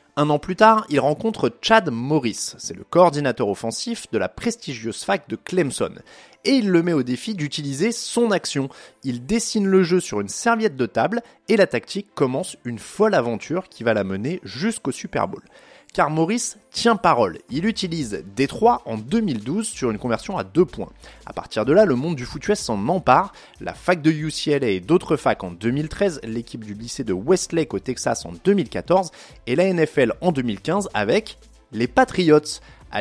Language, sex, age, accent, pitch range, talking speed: French, male, 30-49, French, 125-185 Hz, 185 wpm